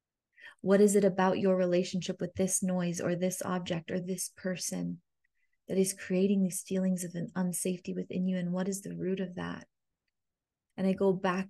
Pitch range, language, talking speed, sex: 175-190 Hz, English, 190 wpm, female